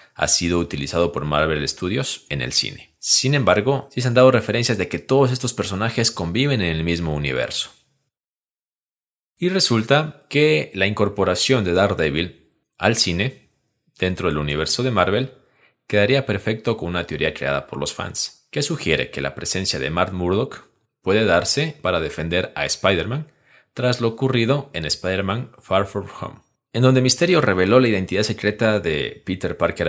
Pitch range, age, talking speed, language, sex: 85-130 Hz, 30-49, 165 wpm, Spanish, male